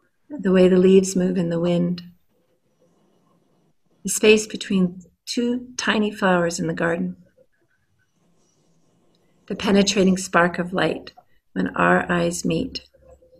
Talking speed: 115 wpm